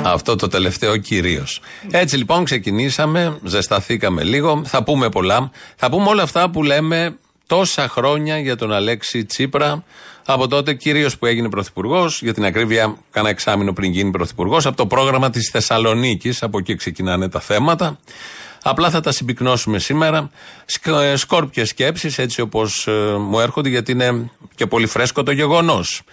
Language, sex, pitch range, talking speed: Greek, male, 105-155 Hz, 150 wpm